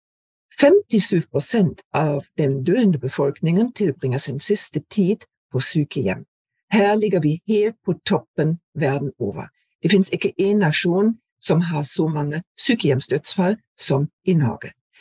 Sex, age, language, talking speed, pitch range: female, 60-79, English, 130 wpm, 145-195 Hz